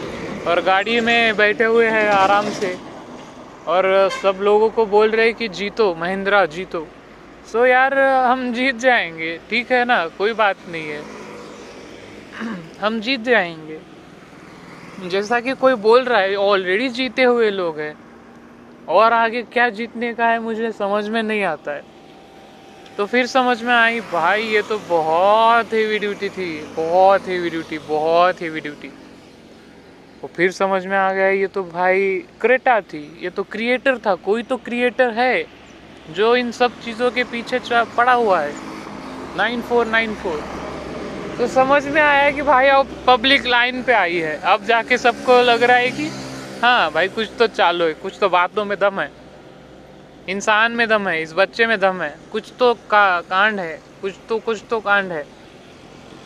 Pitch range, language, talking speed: 180-240 Hz, Marathi, 135 wpm